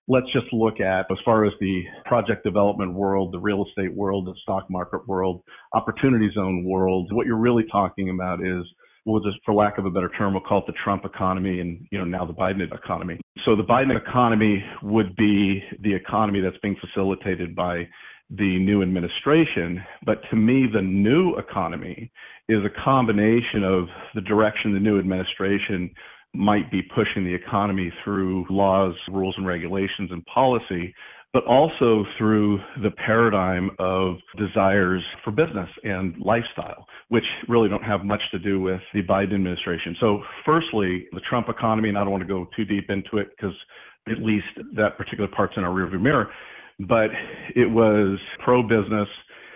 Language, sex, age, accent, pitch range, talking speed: English, male, 40-59, American, 95-110 Hz, 170 wpm